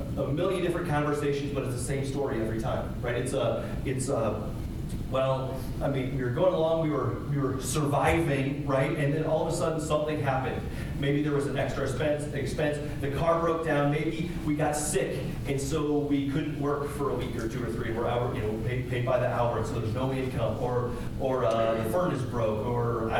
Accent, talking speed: American, 220 wpm